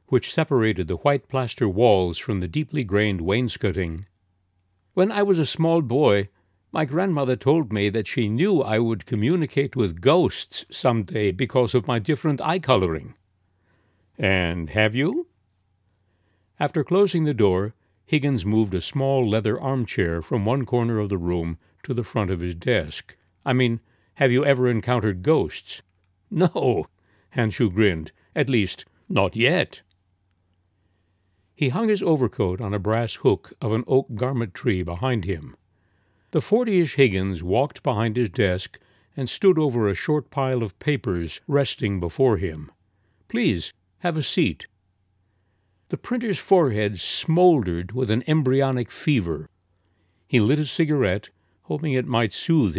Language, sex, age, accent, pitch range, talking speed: English, male, 60-79, American, 95-135 Hz, 145 wpm